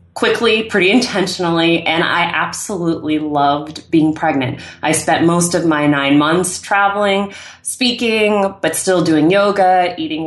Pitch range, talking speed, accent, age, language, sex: 155-185 Hz, 135 wpm, American, 20-39, English, female